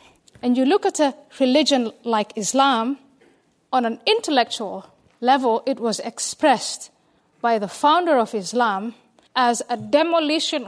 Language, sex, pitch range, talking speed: English, female, 230-290 Hz, 130 wpm